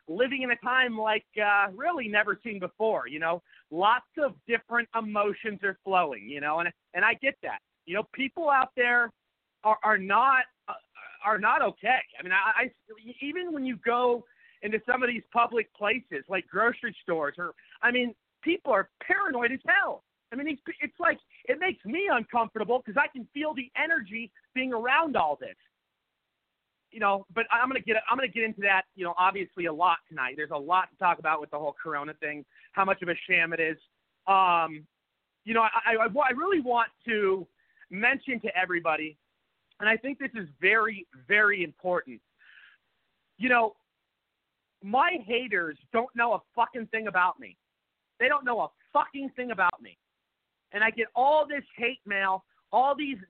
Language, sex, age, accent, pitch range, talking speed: English, male, 40-59, American, 190-255 Hz, 180 wpm